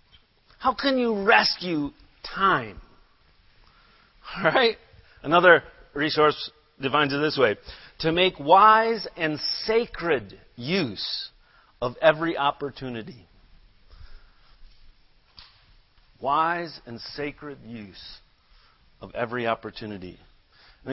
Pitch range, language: 115-150 Hz, English